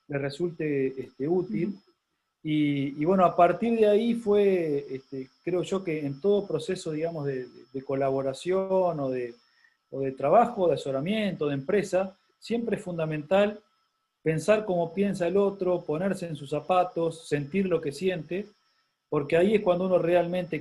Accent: Argentinian